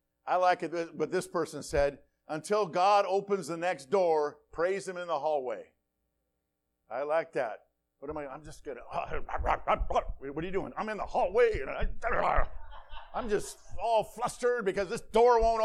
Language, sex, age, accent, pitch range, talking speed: English, male, 50-69, American, 185-265 Hz, 170 wpm